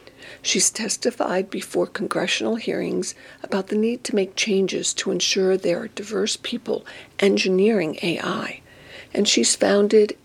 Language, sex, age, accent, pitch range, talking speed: English, female, 60-79, American, 190-240 Hz, 130 wpm